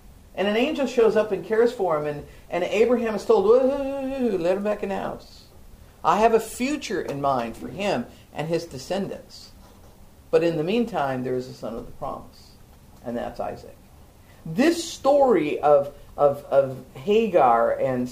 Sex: female